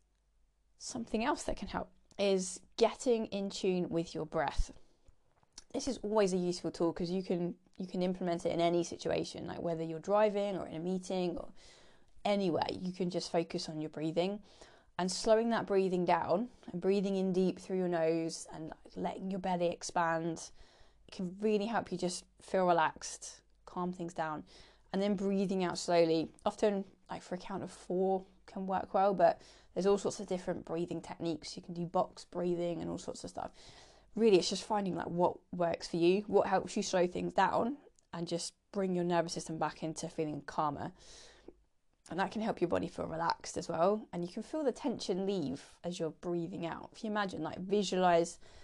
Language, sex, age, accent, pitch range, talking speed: English, female, 20-39, British, 170-200 Hz, 195 wpm